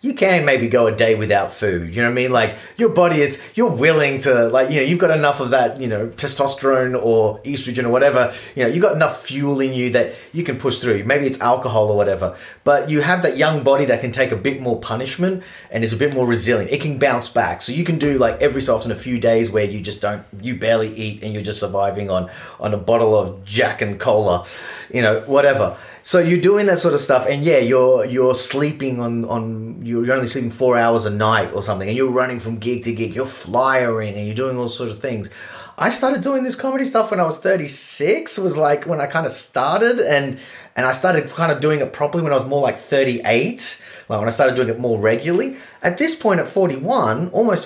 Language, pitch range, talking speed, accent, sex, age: English, 115-170 Hz, 245 wpm, Australian, male, 30-49